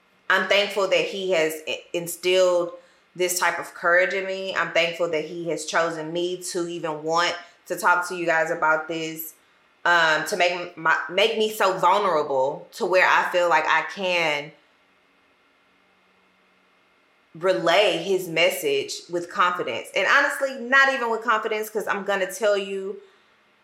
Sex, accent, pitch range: female, American, 170-205 Hz